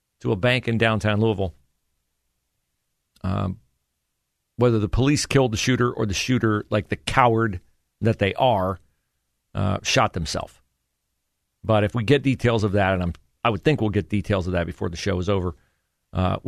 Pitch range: 80-120 Hz